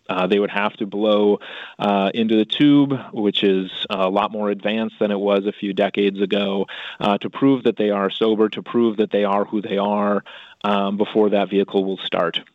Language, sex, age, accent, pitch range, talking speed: English, male, 30-49, American, 100-110 Hz, 210 wpm